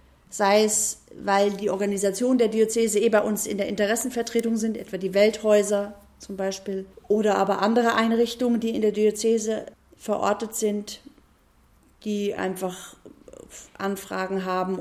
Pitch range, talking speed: 195-225 Hz, 135 wpm